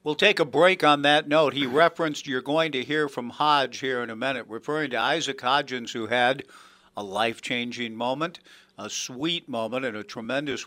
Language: English